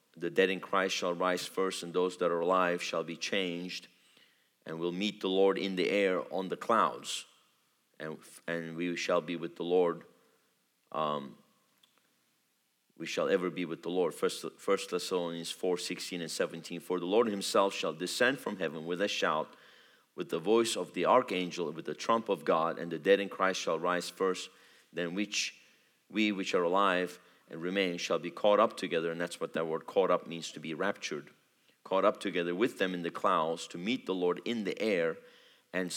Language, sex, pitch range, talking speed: English, male, 85-105 Hz, 200 wpm